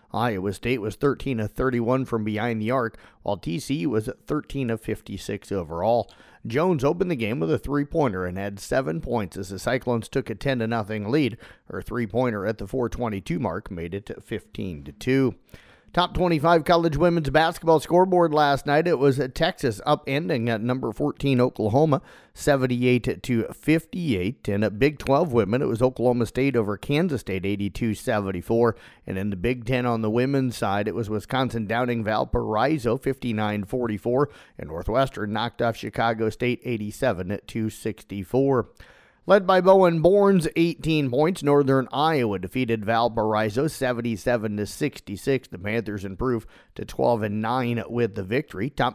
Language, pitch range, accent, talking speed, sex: English, 110-140 Hz, American, 150 wpm, male